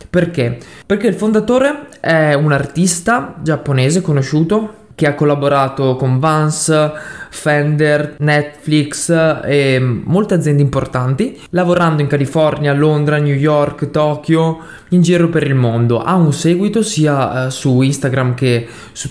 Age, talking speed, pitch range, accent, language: 20-39, 125 wpm, 140-170 Hz, native, Italian